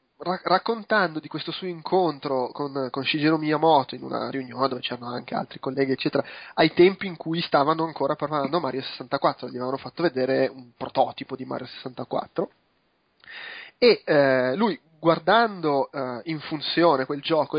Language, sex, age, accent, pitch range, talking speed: Italian, male, 20-39, native, 140-180 Hz, 160 wpm